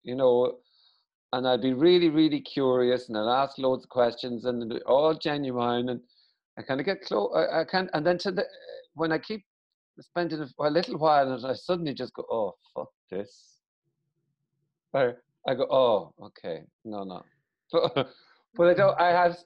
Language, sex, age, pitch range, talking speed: English, male, 50-69, 115-165 Hz, 180 wpm